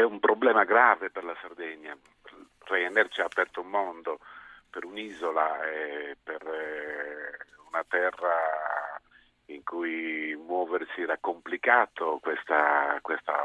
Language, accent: Italian, native